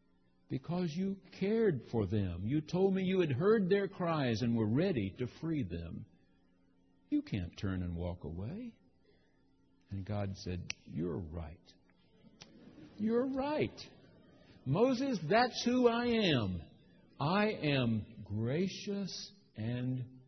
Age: 60-79